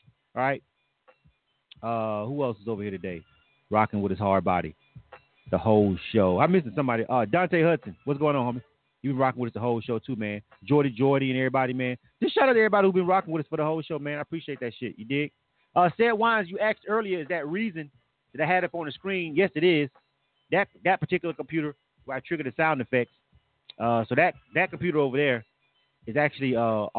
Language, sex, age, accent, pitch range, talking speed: English, male, 30-49, American, 115-165 Hz, 225 wpm